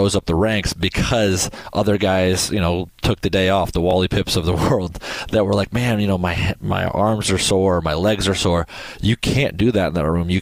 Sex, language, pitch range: male, English, 85-100 Hz